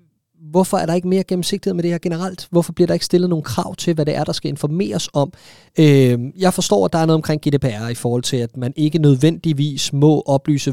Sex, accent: male, native